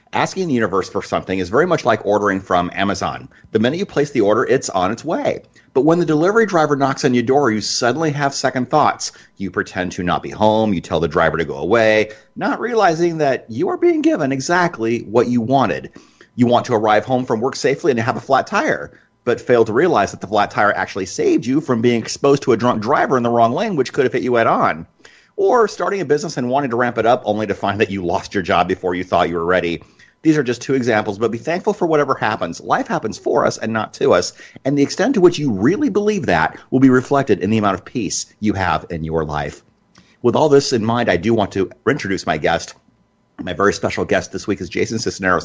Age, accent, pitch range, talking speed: 30-49, American, 105-150 Hz, 250 wpm